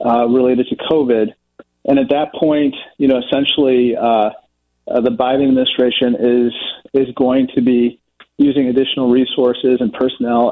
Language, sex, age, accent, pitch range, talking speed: English, male, 40-59, American, 115-140 Hz, 150 wpm